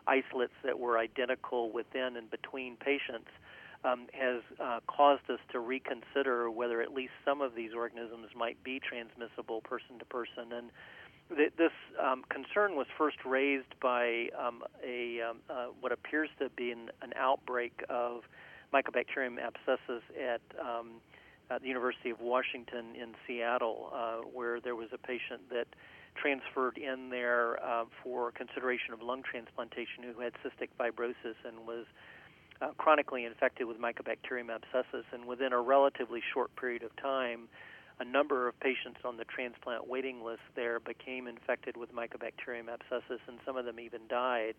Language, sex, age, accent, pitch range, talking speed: English, male, 40-59, American, 120-130 Hz, 155 wpm